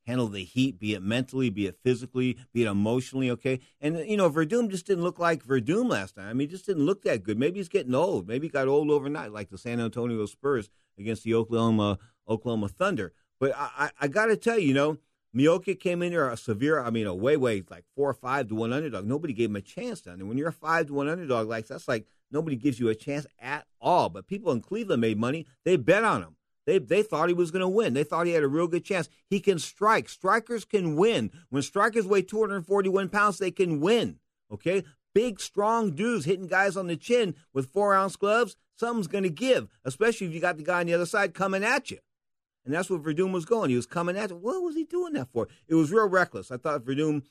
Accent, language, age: American, English, 50-69